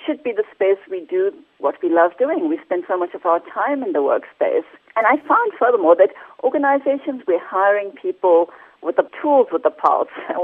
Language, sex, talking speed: English, female, 205 wpm